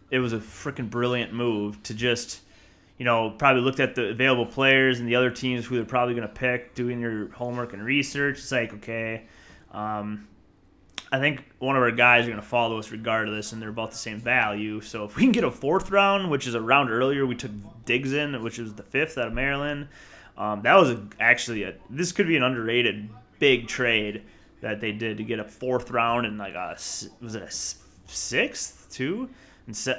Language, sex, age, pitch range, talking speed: English, male, 30-49, 105-130 Hz, 220 wpm